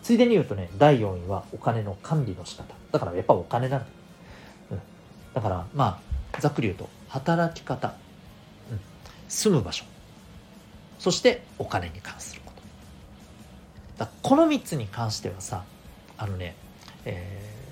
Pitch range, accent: 95-160 Hz, native